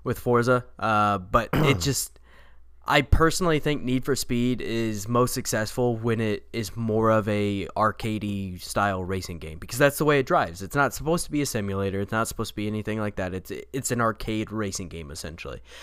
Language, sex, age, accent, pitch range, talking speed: English, male, 20-39, American, 100-125 Hz, 200 wpm